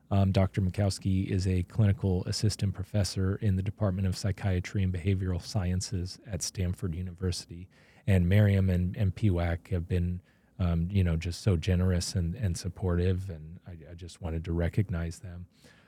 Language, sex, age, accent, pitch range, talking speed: English, male, 30-49, American, 90-105 Hz, 165 wpm